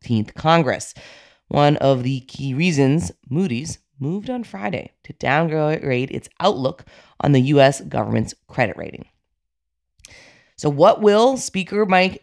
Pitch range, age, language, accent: 125-185 Hz, 30-49, English, American